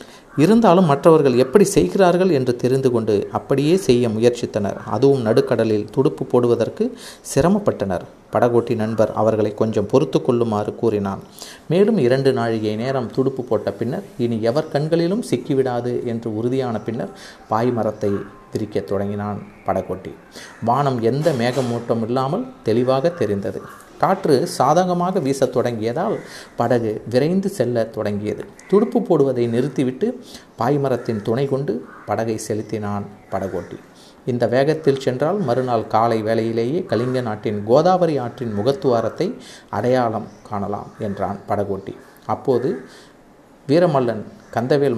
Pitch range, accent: 110-140 Hz, native